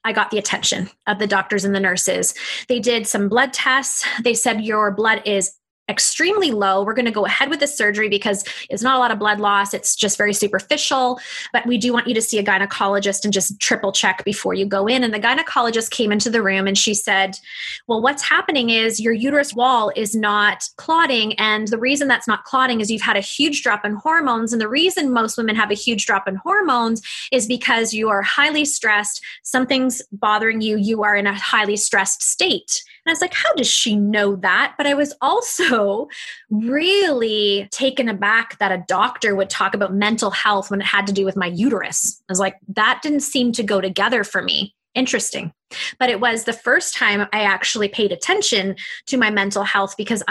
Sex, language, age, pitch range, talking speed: female, English, 20-39, 205-255 Hz, 215 wpm